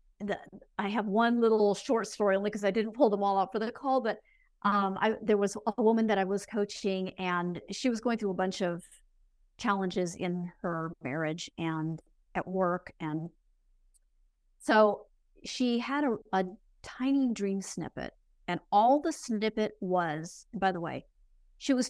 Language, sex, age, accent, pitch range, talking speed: English, female, 50-69, American, 185-225 Hz, 175 wpm